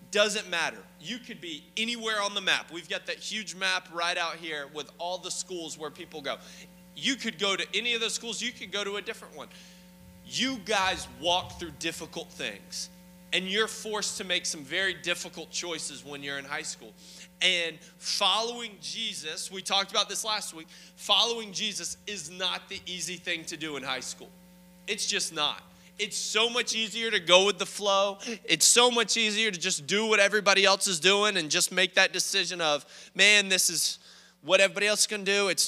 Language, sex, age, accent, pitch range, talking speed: English, male, 20-39, American, 170-205 Hz, 205 wpm